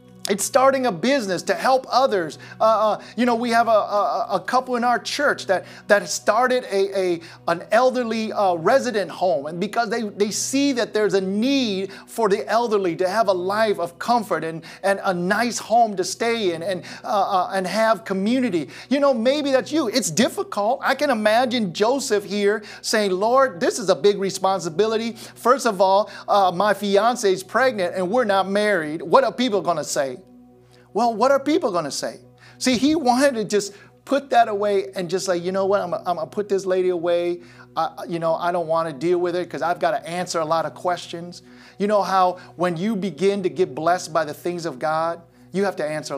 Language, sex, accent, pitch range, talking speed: English, male, American, 175-235 Hz, 210 wpm